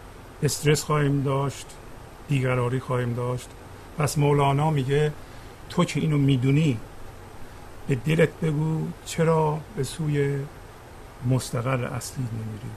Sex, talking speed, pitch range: male, 105 wpm, 115-150 Hz